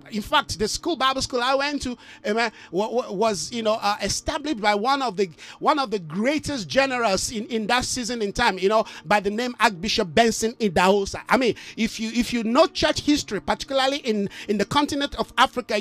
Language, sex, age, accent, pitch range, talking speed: English, male, 50-69, Nigerian, 220-280 Hz, 210 wpm